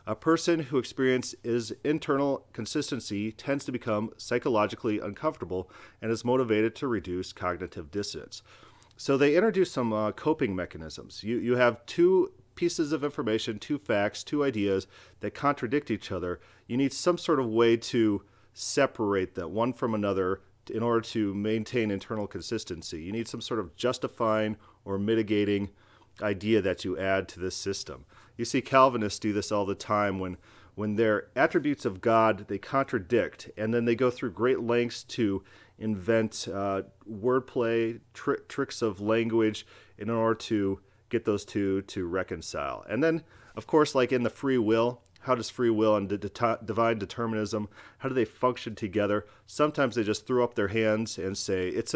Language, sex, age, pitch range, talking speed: English, male, 40-59, 100-125 Hz, 165 wpm